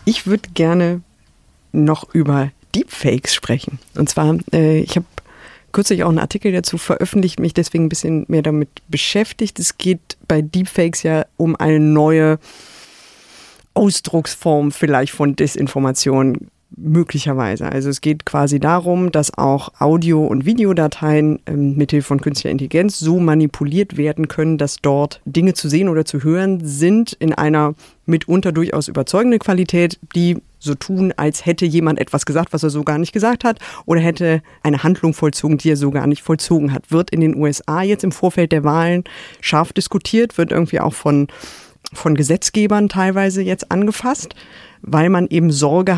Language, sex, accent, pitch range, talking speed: German, female, German, 150-180 Hz, 160 wpm